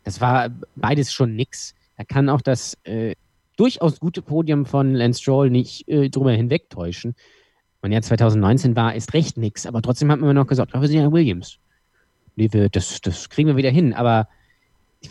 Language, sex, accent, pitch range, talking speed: German, male, German, 110-150 Hz, 190 wpm